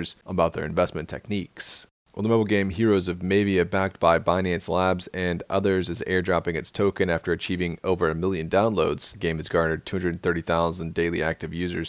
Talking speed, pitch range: 175 wpm, 85-100 Hz